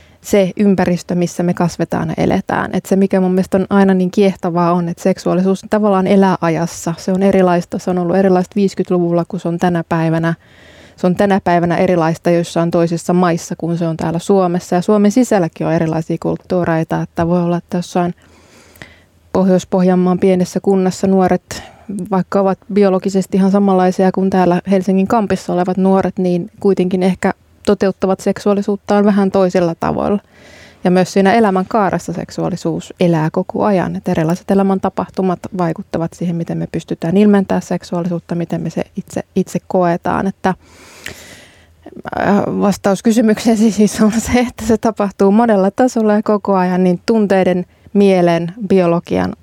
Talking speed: 150 wpm